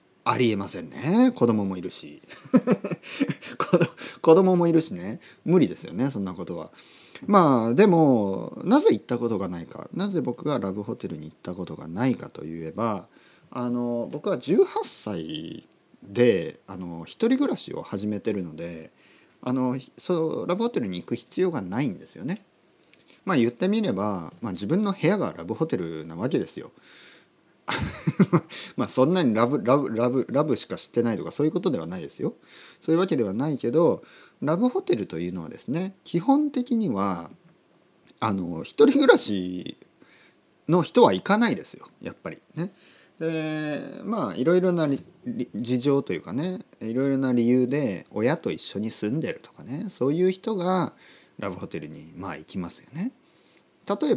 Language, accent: Japanese, native